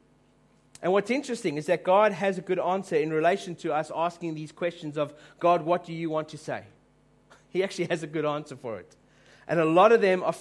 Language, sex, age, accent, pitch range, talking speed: English, male, 30-49, Australian, 170-220 Hz, 225 wpm